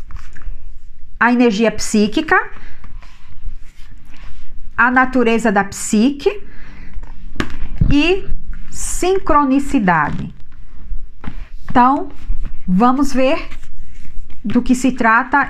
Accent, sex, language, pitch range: Brazilian, female, Portuguese, 210-275 Hz